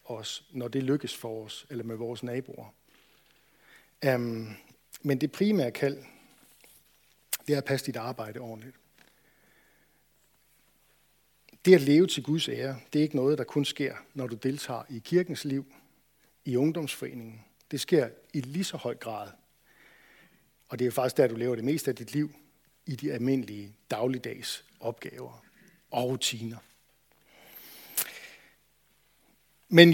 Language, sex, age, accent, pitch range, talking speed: Danish, male, 60-79, native, 125-155 Hz, 140 wpm